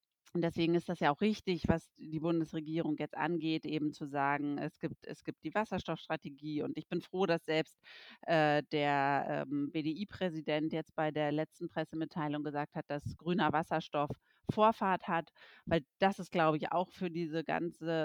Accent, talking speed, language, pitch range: German, 170 wpm, German, 150-185 Hz